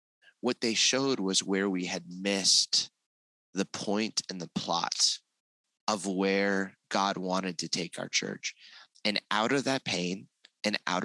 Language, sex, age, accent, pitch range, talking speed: English, male, 20-39, American, 95-120 Hz, 150 wpm